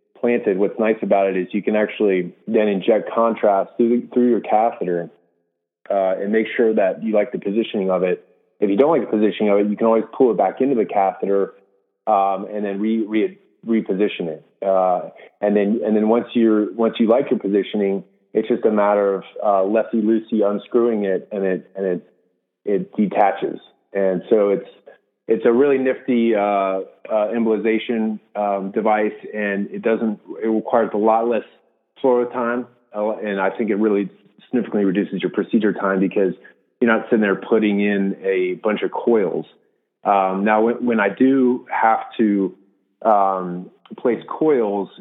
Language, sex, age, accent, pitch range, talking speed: English, male, 30-49, American, 100-110 Hz, 180 wpm